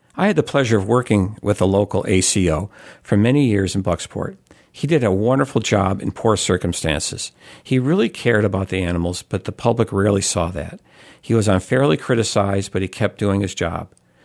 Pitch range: 95-115 Hz